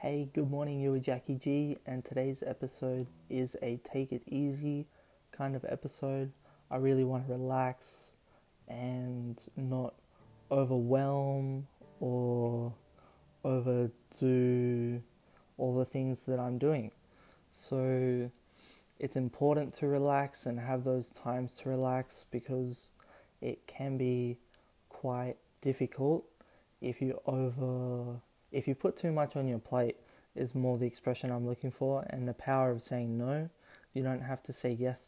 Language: English